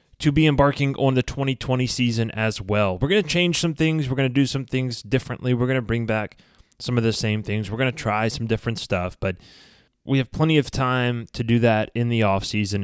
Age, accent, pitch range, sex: 20-39, American, 100-125 Hz, male